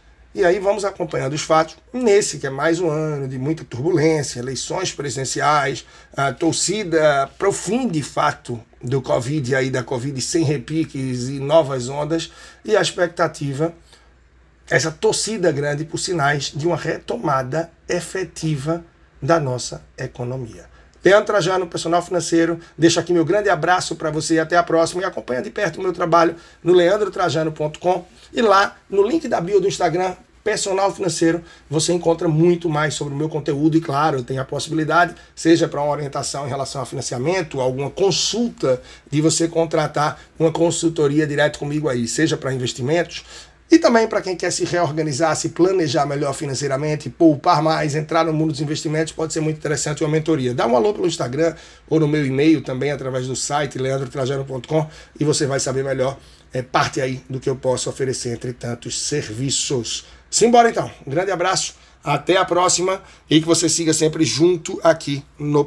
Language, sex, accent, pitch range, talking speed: Portuguese, male, Brazilian, 135-170 Hz, 170 wpm